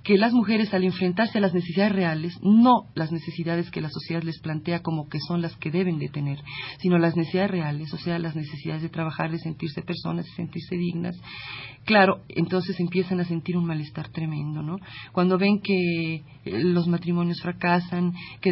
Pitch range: 160-185 Hz